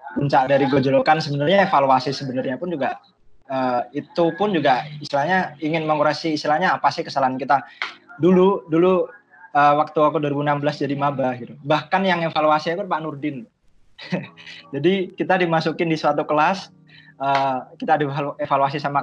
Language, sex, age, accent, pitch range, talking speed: Indonesian, male, 20-39, native, 135-160 Hz, 140 wpm